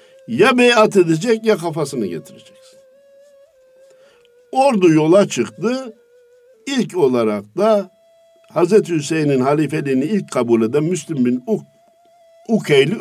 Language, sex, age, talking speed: Turkish, male, 60-79, 95 wpm